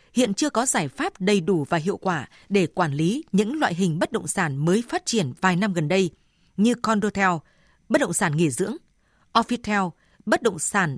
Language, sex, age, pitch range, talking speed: Vietnamese, female, 20-39, 180-240 Hz, 200 wpm